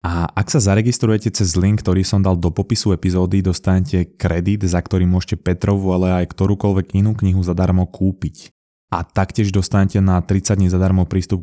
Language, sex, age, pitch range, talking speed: Slovak, male, 20-39, 90-105 Hz, 175 wpm